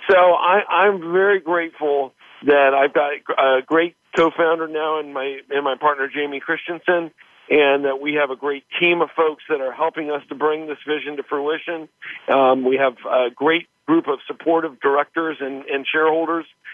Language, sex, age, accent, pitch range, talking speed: English, male, 50-69, American, 150-175 Hz, 180 wpm